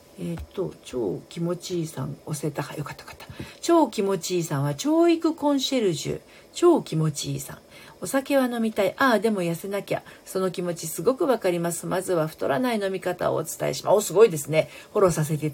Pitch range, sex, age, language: 150-225 Hz, female, 50-69, Japanese